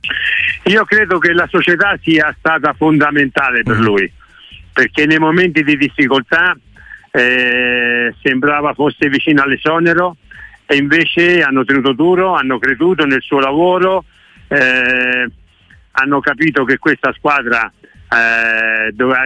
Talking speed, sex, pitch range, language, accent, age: 120 wpm, male, 125-160 Hz, Italian, native, 60-79